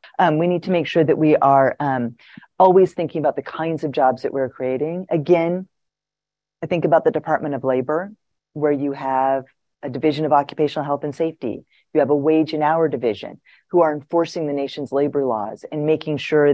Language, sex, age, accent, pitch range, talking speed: English, female, 30-49, American, 140-180 Hz, 200 wpm